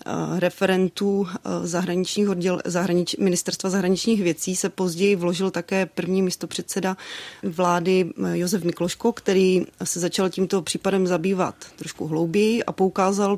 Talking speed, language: 110 wpm, Czech